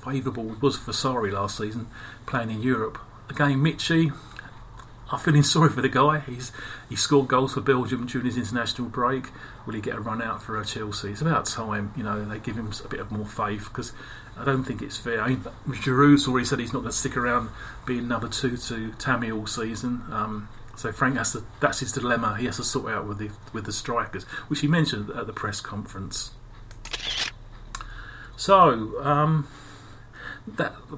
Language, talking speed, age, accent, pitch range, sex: English, 195 wpm, 40-59, British, 110-135 Hz, male